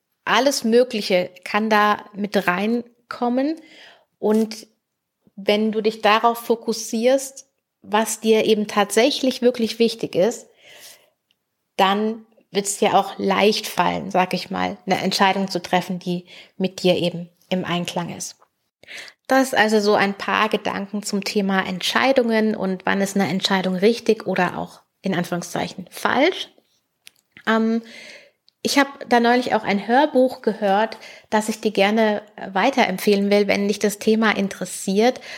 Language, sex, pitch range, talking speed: German, female, 195-235 Hz, 135 wpm